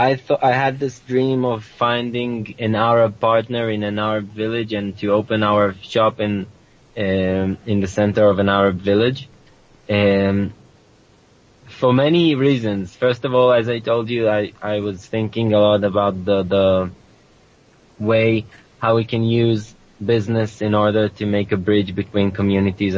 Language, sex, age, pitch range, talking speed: English, male, 20-39, 100-115 Hz, 165 wpm